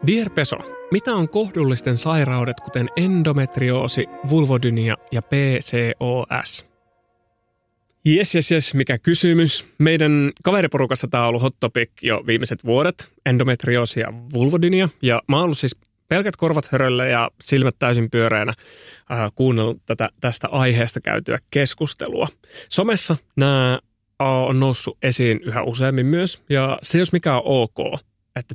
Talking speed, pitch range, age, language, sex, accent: 130 wpm, 120-160 Hz, 30-49, Finnish, male, native